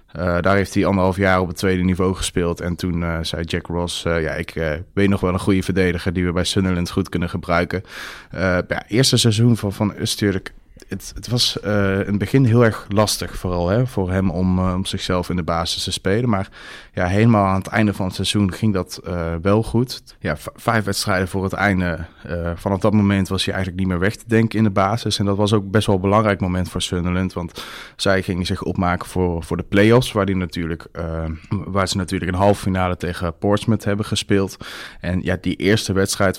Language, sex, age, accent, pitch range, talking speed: English, male, 20-39, Dutch, 90-100 Hz, 225 wpm